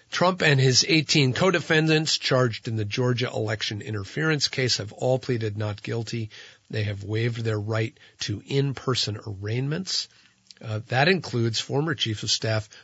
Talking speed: 150 wpm